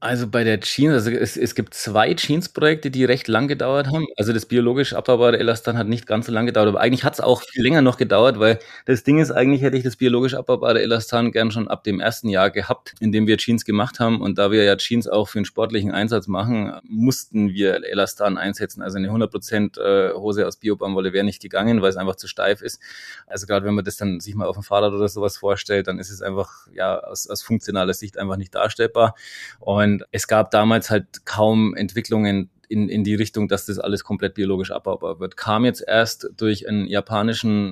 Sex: male